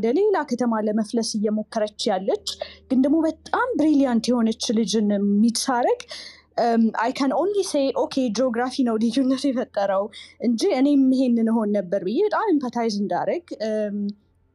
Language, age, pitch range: Amharic, 20-39, 210-275 Hz